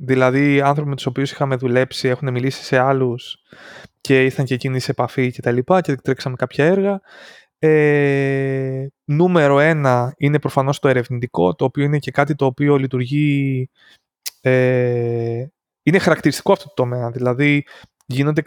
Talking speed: 155 wpm